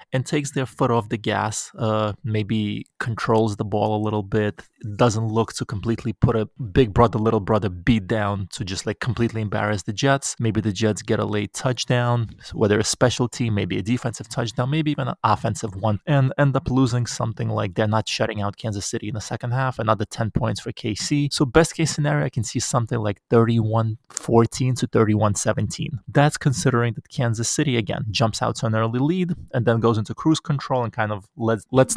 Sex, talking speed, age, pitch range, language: male, 205 wpm, 20-39, 110-135 Hz, English